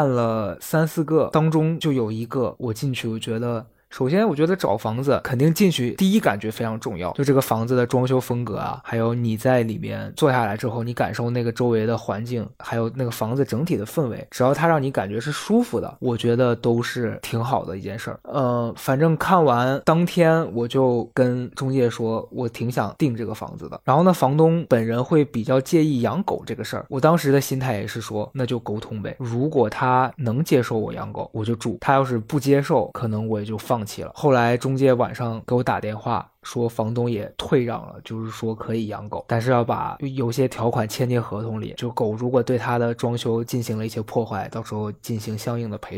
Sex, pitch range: male, 115-135 Hz